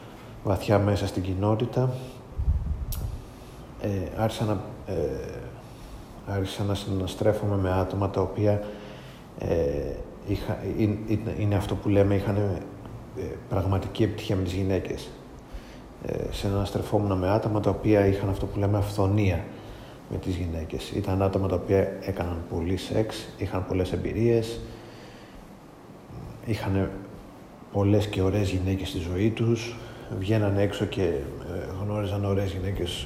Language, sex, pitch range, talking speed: Greek, male, 95-110 Hz, 115 wpm